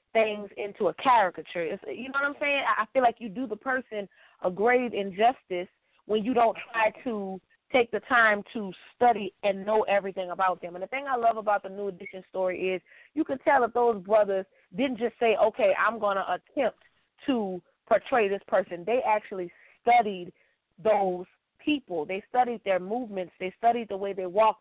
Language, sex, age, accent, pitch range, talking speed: English, female, 20-39, American, 195-240 Hz, 190 wpm